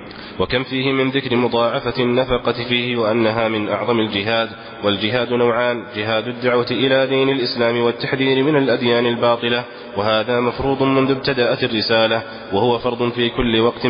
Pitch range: 110-125 Hz